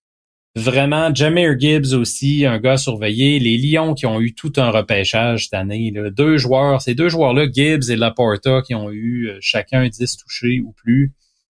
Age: 30-49